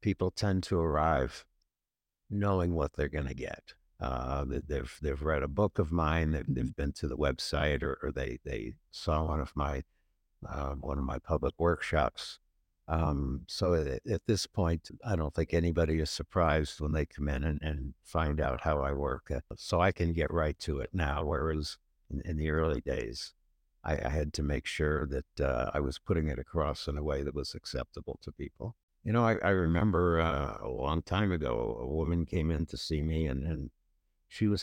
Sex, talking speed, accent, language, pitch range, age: male, 205 wpm, American, English, 75-95 Hz, 60-79